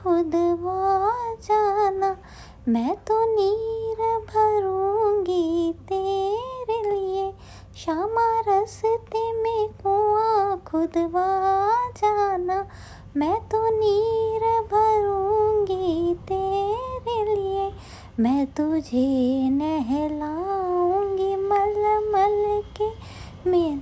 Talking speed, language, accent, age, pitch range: 65 wpm, Hindi, native, 20-39, 340-430 Hz